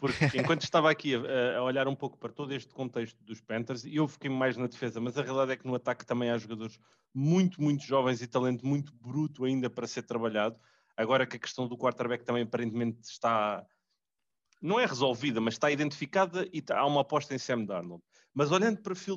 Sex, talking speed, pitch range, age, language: male, 205 wpm, 125-150 Hz, 30-49, English